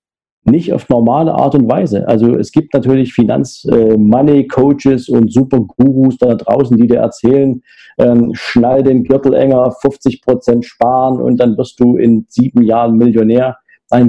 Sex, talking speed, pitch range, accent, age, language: male, 150 wpm, 115-135 Hz, German, 50-69, German